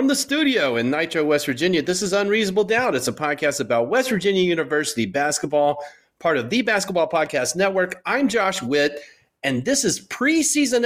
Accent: American